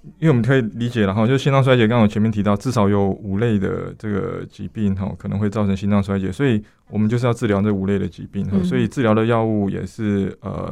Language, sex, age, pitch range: Chinese, male, 20-39, 100-125 Hz